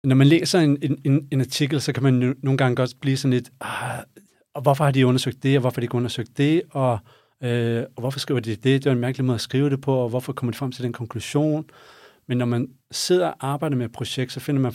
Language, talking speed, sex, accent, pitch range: English, 275 wpm, male, Danish, 125-145 Hz